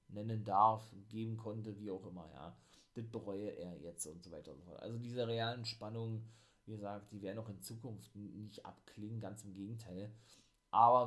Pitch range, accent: 105-120 Hz, German